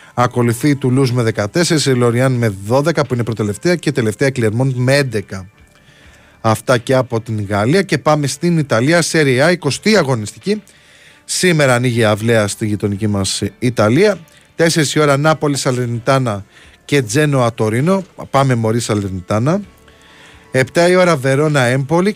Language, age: Greek, 30-49